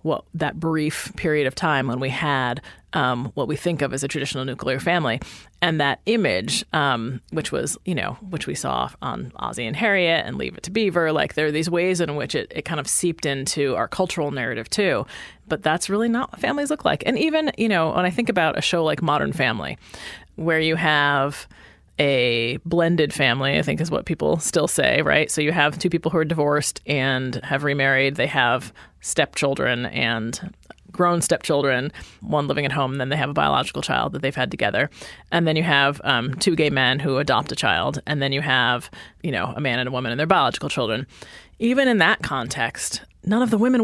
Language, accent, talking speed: English, American, 215 wpm